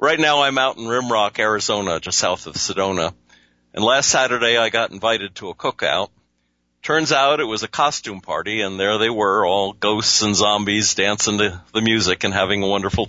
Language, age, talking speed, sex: English, 50-69, 195 wpm, male